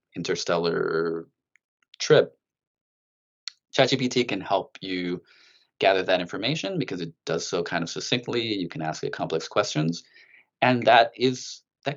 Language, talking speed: English, 130 wpm